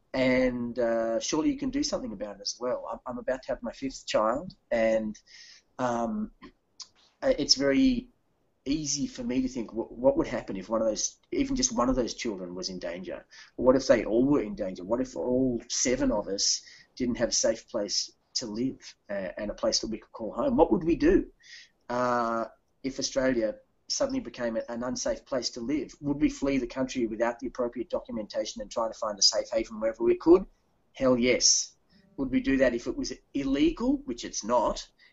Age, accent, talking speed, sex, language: 30-49, Australian, 205 wpm, male, English